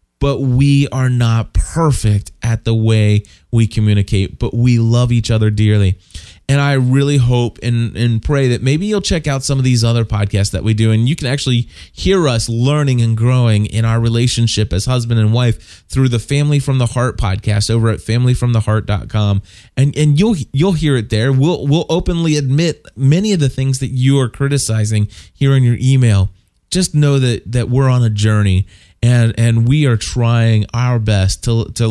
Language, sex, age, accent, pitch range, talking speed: English, male, 20-39, American, 110-130 Hz, 190 wpm